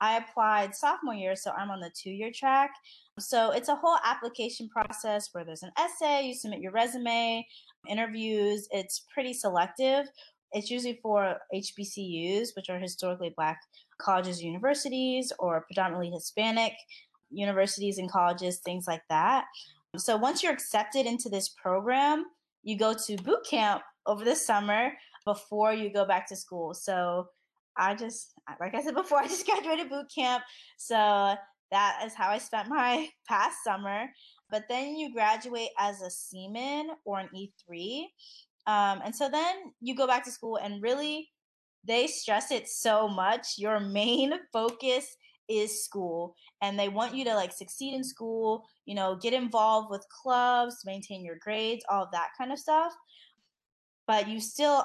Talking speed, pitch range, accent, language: 160 wpm, 195-260 Hz, American, English